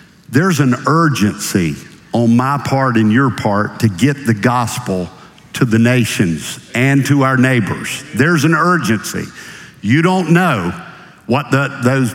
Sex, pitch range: male, 115-150 Hz